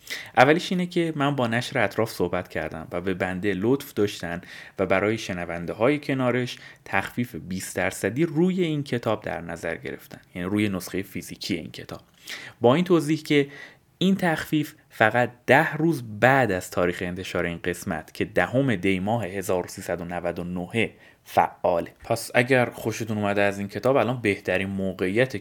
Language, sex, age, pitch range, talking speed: Persian, male, 30-49, 95-135 Hz, 155 wpm